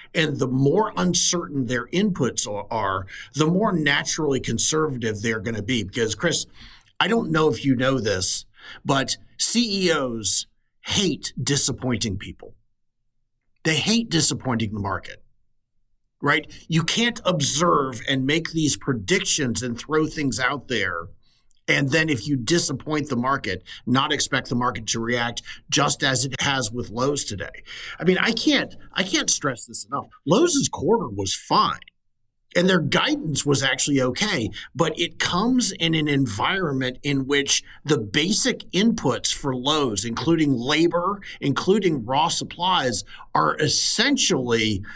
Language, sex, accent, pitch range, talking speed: English, male, American, 120-165 Hz, 140 wpm